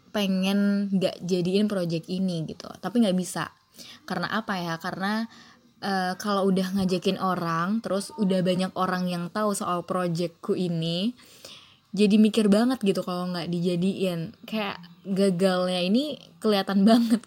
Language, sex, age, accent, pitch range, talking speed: Indonesian, female, 20-39, native, 175-200 Hz, 135 wpm